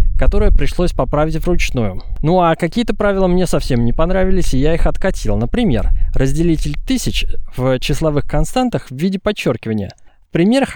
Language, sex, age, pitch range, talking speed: Russian, male, 20-39, 125-185 Hz, 150 wpm